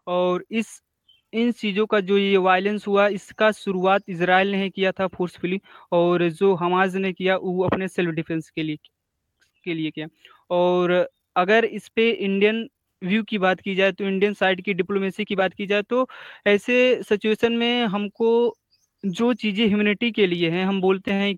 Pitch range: 175-210 Hz